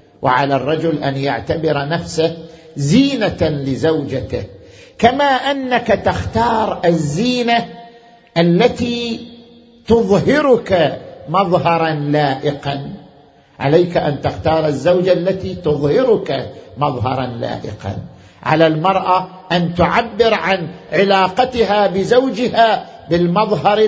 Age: 50-69